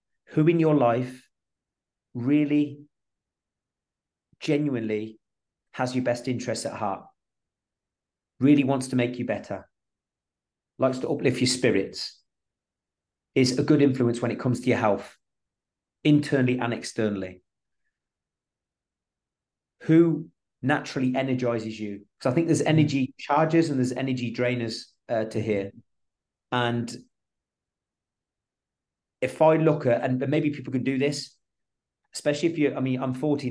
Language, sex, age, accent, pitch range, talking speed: English, male, 30-49, British, 115-140 Hz, 125 wpm